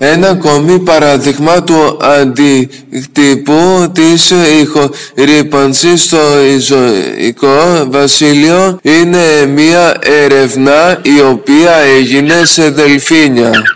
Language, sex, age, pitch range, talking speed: Greek, male, 20-39, 130-160 Hz, 80 wpm